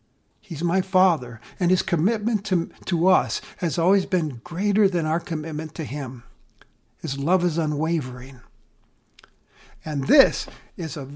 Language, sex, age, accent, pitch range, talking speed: English, male, 60-79, American, 160-215 Hz, 140 wpm